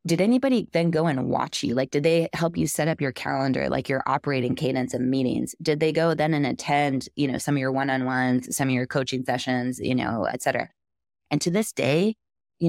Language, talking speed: English, 225 wpm